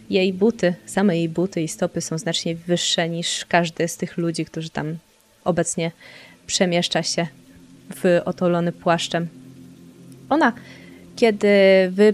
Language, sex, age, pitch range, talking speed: Polish, female, 20-39, 170-195 Hz, 130 wpm